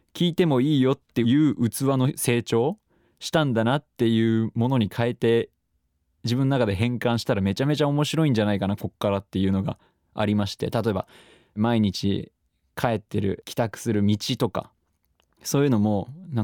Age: 20-39